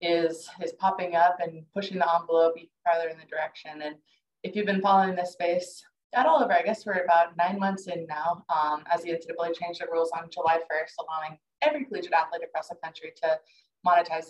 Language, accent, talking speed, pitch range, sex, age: English, American, 205 wpm, 165-200 Hz, female, 20-39